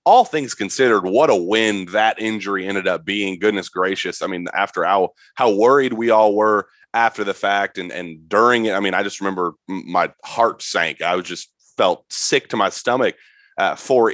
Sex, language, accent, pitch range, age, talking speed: male, English, American, 95-115 Hz, 30-49, 200 wpm